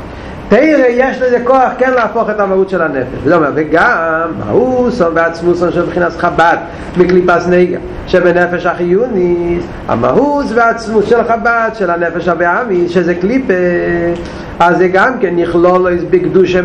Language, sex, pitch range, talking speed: Hebrew, male, 180-250 Hz, 95 wpm